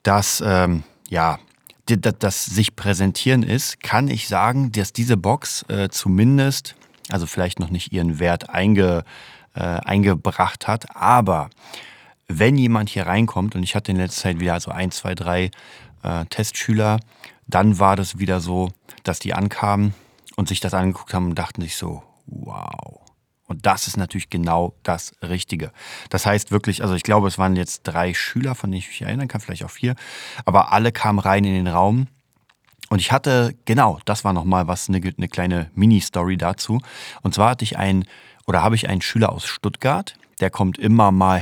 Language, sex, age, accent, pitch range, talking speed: German, male, 30-49, German, 90-110 Hz, 175 wpm